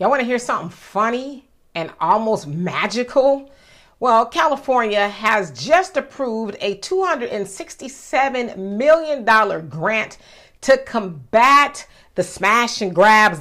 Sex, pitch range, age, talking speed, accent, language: female, 200-275 Hz, 40-59, 105 wpm, American, English